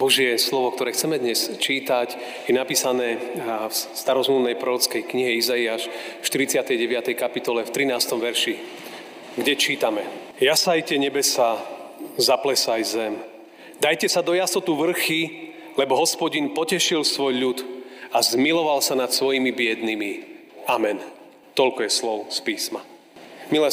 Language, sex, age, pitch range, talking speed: Slovak, male, 40-59, 130-170 Hz, 120 wpm